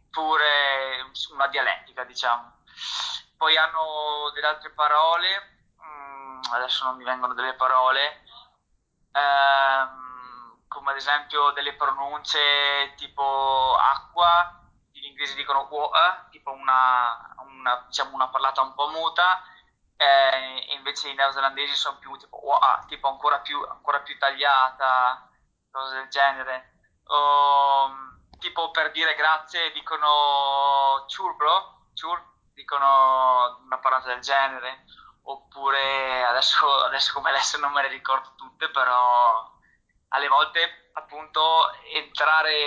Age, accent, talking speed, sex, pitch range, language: 20-39, native, 115 wpm, male, 130-150 Hz, Italian